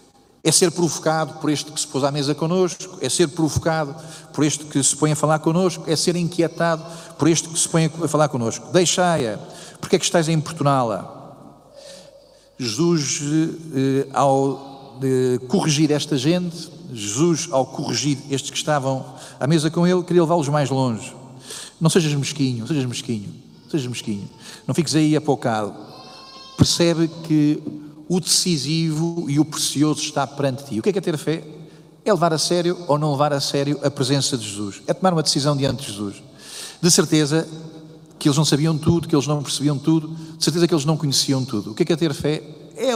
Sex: male